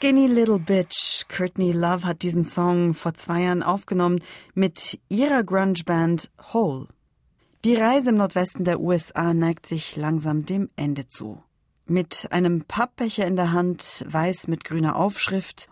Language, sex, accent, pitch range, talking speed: German, female, German, 170-205 Hz, 145 wpm